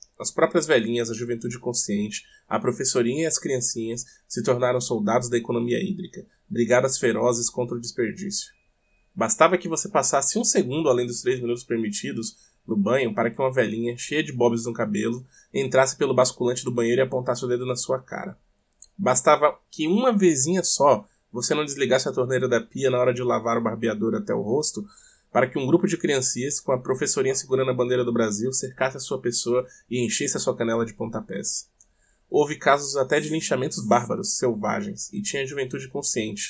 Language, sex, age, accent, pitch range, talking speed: Portuguese, male, 20-39, Brazilian, 120-150 Hz, 185 wpm